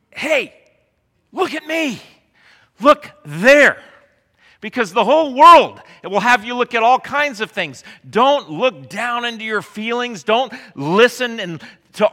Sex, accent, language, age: male, American, English, 40-59